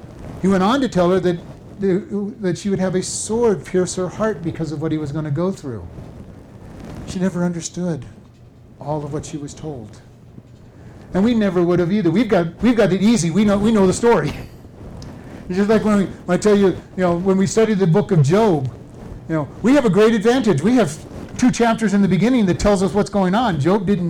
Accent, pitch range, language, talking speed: American, 150-195 Hz, English, 225 wpm